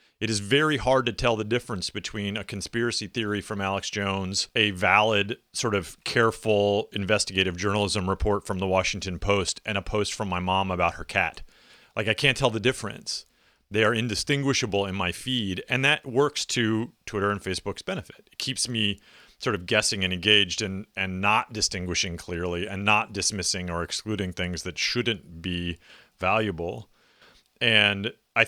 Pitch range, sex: 90-110 Hz, male